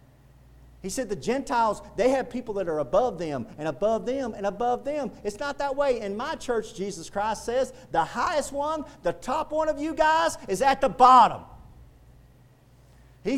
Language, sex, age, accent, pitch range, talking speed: English, male, 40-59, American, 215-275 Hz, 185 wpm